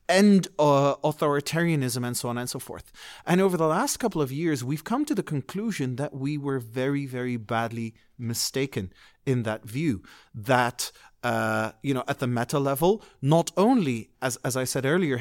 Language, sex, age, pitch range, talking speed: English, male, 40-59, 125-170 Hz, 180 wpm